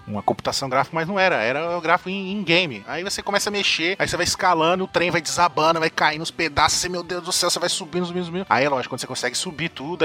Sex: male